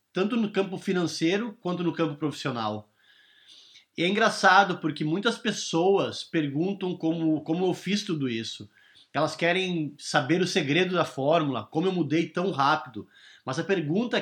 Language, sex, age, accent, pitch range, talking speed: Portuguese, male, 20-39, Brazilian, 155-195 Hz, 150 wpm